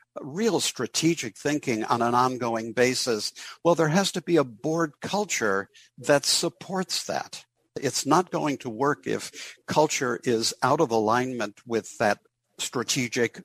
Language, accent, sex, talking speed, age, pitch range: English, American, male, 145 wpm, 60-79, 115-150 Hz